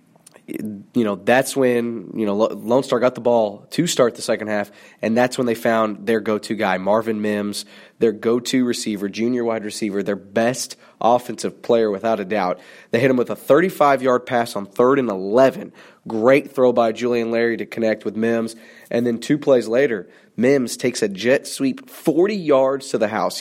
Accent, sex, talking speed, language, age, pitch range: American, male, 190 wpm, English, 20-39, 115-135 Hz